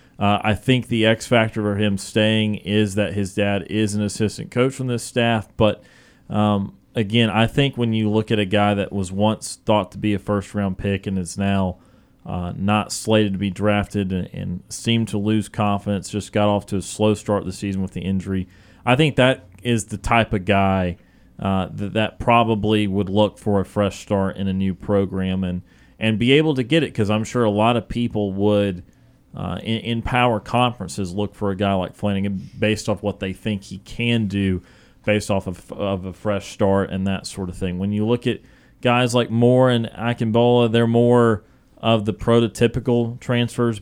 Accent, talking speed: American, 205 wpm